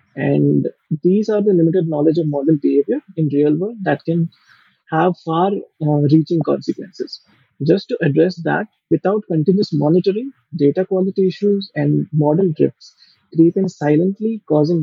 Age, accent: 30-49, Indian